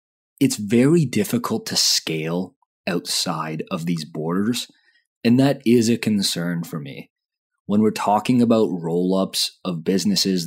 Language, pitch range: English, 90-125 Hz